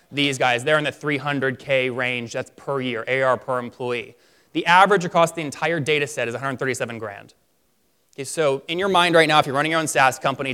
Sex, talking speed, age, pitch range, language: male, 210 wpm, 20-39, 135-160 Hz, English